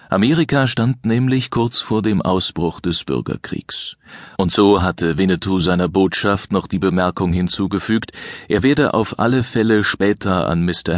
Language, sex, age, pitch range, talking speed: German, male, 40-59, 85-110 Hz, 150 wpm